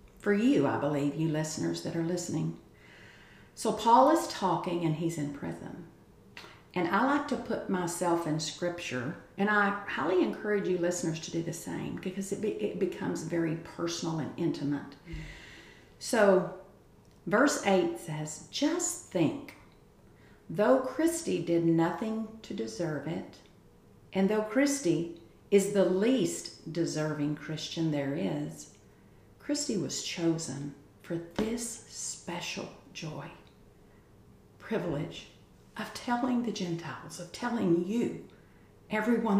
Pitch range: 160-215 Hz